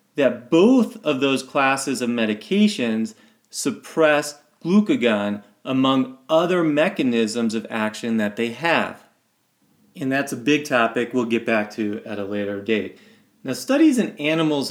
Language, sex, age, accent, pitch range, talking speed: English, male, 30-49, American, 110-150 Hz, 140 wpm